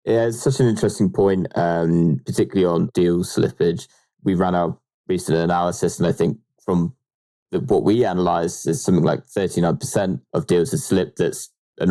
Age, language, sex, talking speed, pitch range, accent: 20-39, English, male, 165 wpm, 85-100 Hz, British